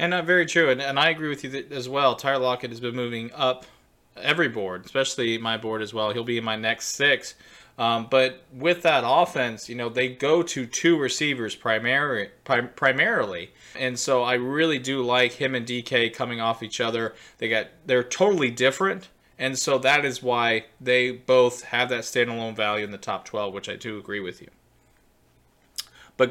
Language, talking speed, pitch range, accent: English, 185 wpm, 120-140 Hz, American